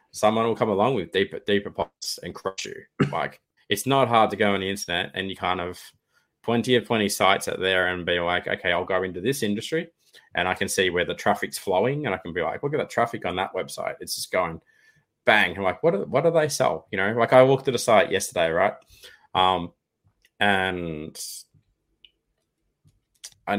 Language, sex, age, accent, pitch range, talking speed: English, male, 20-39, Australian, 95-120 Hz, 210 wpm